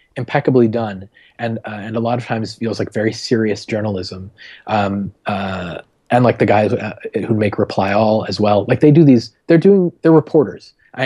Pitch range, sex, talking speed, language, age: 100-130 Hz, male, 195 wpm, English, 30-49